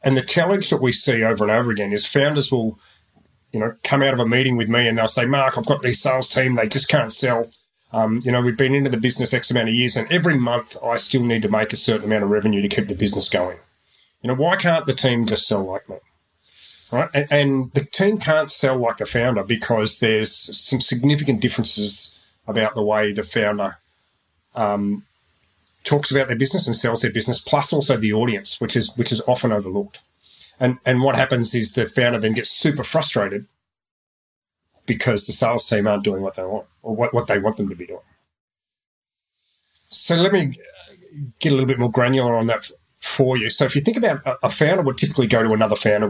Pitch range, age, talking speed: 110-135 Hz, 30-49, 220 wpm